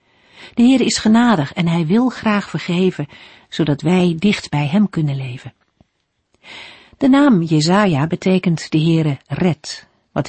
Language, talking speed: Dutch, 140 wpm